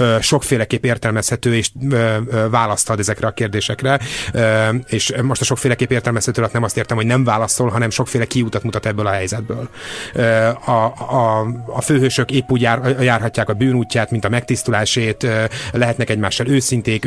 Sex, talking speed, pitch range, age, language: male, 155 wpm, 110-130 Hz, 30-49, Hungarian